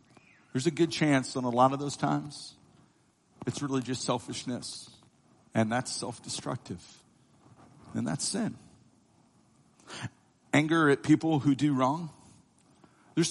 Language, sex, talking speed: English, male, 120 wpm